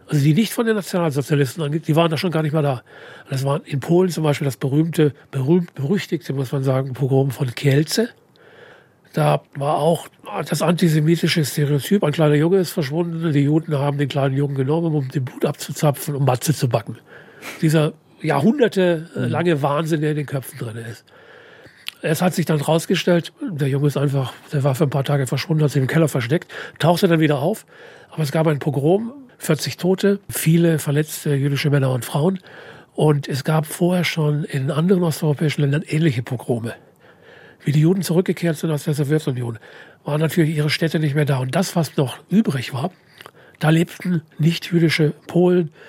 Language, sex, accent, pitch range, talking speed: German, male, German, 145-170 Hz, 180 wpm